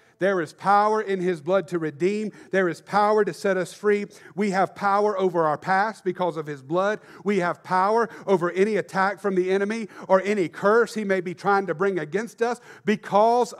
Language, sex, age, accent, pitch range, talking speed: English, male, 40-59, American, 190-225 Hz, 205 wpm